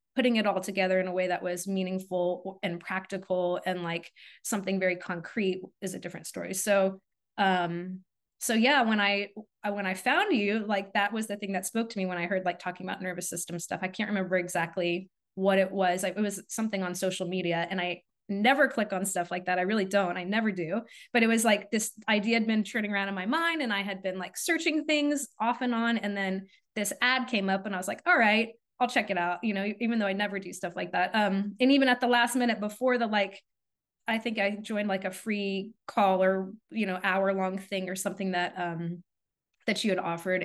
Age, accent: 20-39, American